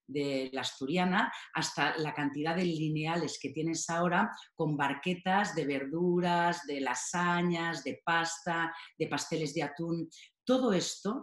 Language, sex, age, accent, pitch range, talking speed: Spanish, female, 40-59, Spanish, 145-200 Hz, 135 wpm